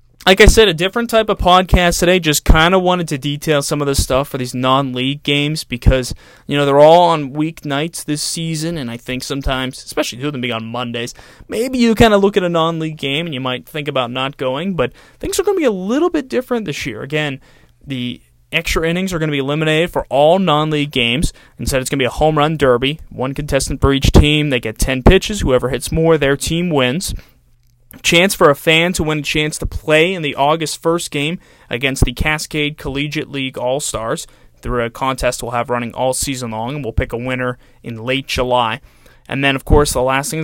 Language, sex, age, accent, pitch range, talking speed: English, male, 20-39, American, 125-160 Hz, 230 wpm